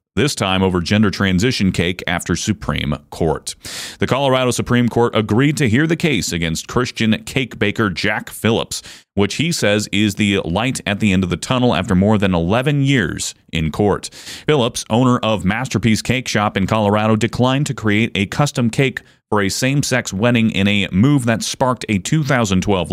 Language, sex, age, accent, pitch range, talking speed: English, male, 30-49, American, 95-120 Hz, 180 wpm